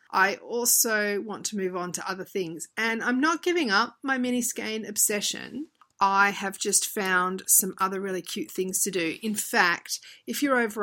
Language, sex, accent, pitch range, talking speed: English, female, Australian, 175-220 Hz, 190 wpm